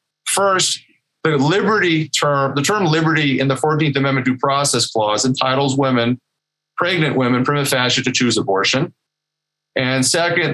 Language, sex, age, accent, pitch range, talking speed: English, male, 40-59, American, 130-155 Hz, 140 wpm